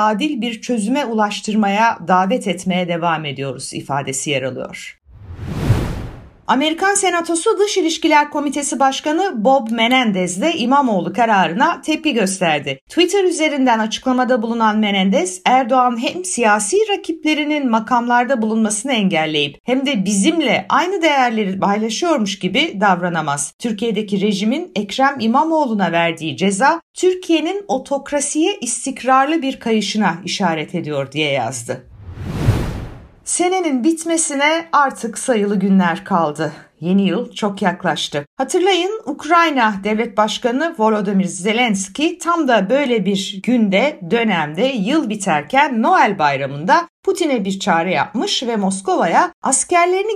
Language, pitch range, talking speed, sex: Turkish, 185-280 Hz, 110 wpm, female